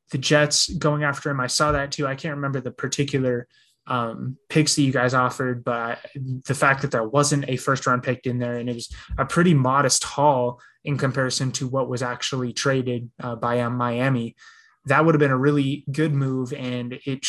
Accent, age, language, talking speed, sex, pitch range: American, 20-39, English, 205 wpm, male, 125-140 Hz